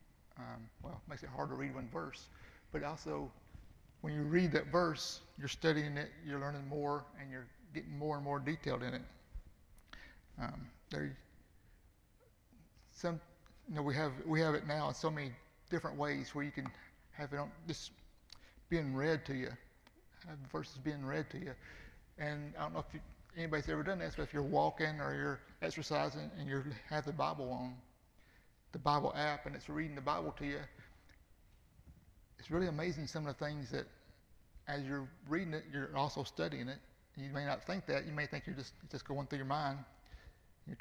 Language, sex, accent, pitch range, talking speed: English, male, American, 135-155 Hz, 195 wpm